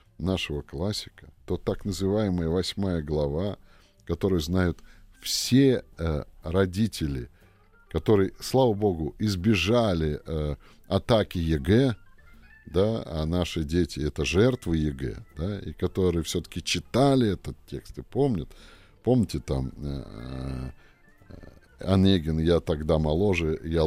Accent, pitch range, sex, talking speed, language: native, 80-105 Hz, male, 110 wpm, Russian